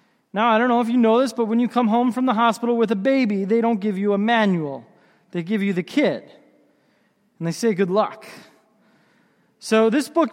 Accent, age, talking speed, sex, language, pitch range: American, 20-39, 220 wpm, male, English, 205-255 Hz